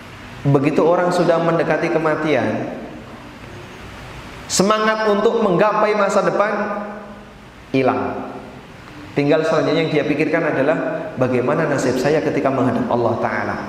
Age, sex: 30-49, male